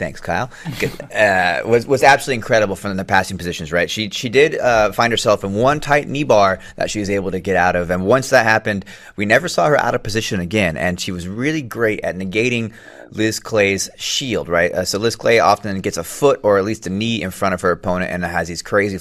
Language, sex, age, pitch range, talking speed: English, male, 30-49, 90-110 Hz, 240 wpm